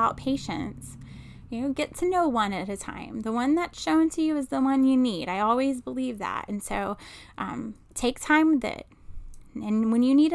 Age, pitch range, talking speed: 10-29, 190-255 Hz, 210 wpm